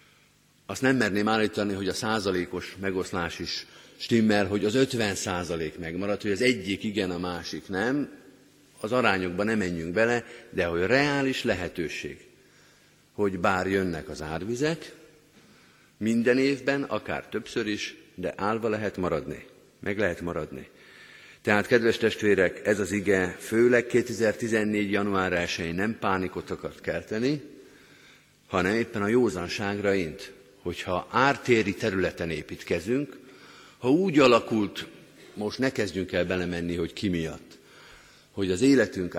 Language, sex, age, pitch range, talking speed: Hungarian, male, 50-69, 90-115 Hz, 130 wpm